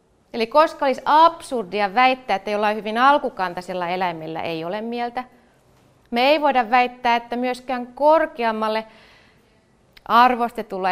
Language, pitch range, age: Finnish, 220-275 Hz, 30-49